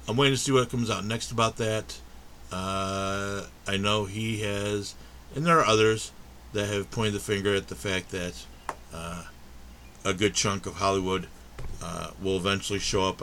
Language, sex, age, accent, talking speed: English, male, 60-79, American, 175 wpm